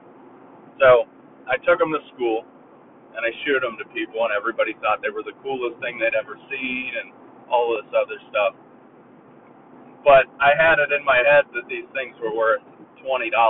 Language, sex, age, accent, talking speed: English, male, 40-59, American, 180 wpm